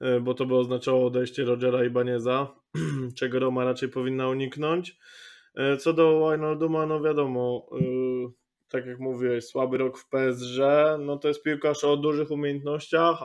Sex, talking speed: male, 140 wpm